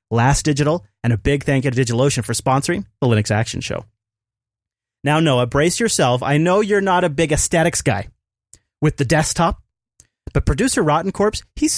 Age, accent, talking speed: 30-49, American, 175 wpm